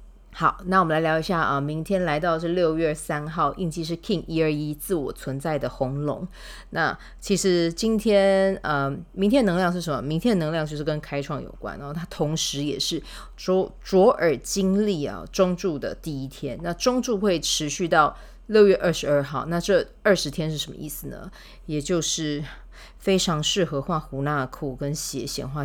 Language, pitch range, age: Chinese, 140-175 Hz, 30-49